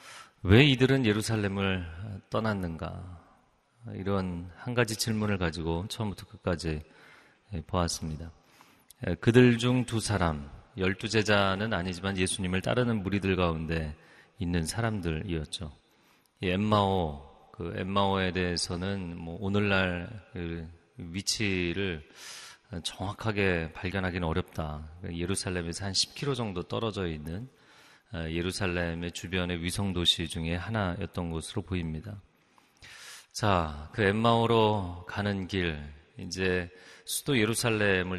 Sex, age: male, 40-59